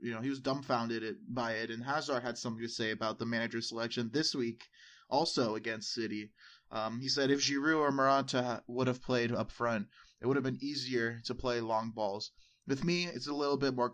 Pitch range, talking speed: 115-140 Hz, 220 wpm